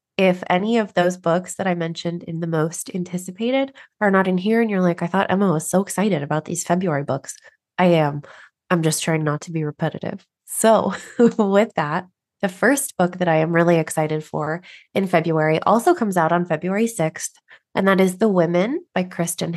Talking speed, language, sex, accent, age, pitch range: 200 wpm, English, female, American, 20-39, 165-200 Hz